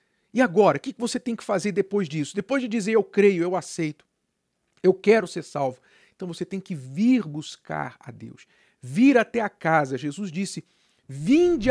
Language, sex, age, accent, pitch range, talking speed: Portuguese, male, 50-69, Brazilian, 135-200 Hz, 185 wpm